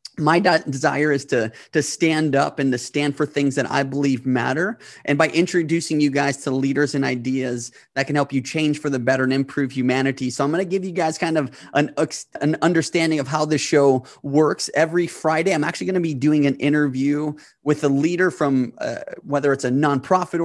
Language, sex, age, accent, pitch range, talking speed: English, male, 30-49, American, 135-155 Hz, 210 wpm